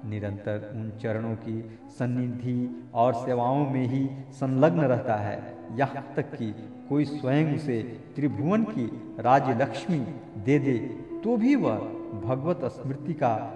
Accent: native